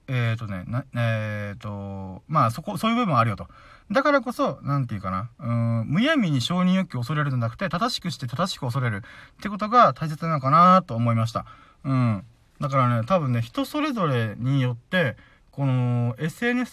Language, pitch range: Japanese, 115-185 Hz